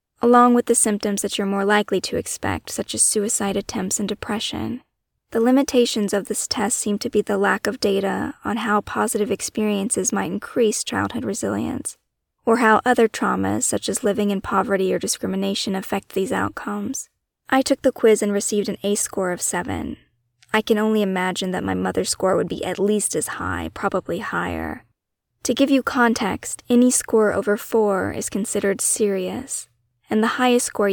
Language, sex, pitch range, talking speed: English, female, 195-220 Hz, 180 wpm